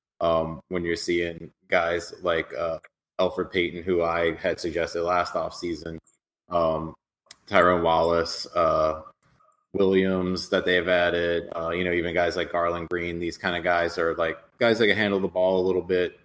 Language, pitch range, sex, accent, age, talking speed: English, 85-95 Hz, male, American, 20-39, 165 wpm